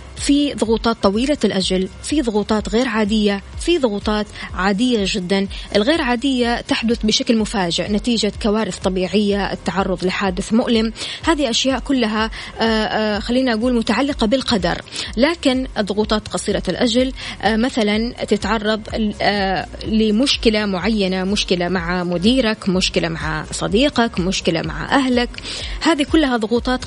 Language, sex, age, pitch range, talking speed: Arabic, female, 20-39, 200-250 Hz, 110 wpm